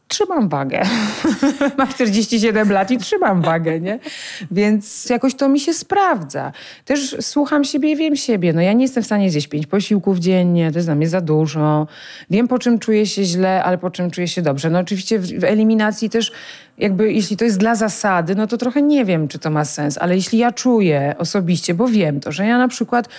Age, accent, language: 30-49, native, Polish